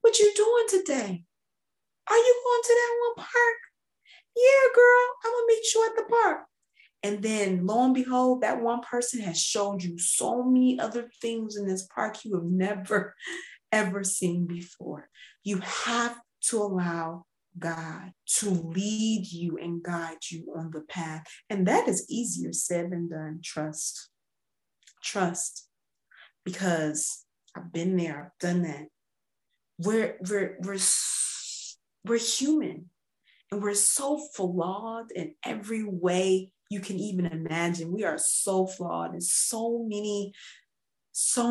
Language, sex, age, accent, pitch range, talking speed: English, female, 30-49, American, 175-235 Hz, 145 wpm